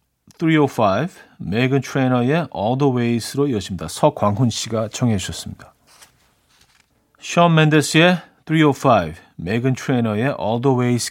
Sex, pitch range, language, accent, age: male, 110-150 Hz, Korean, native, 40-59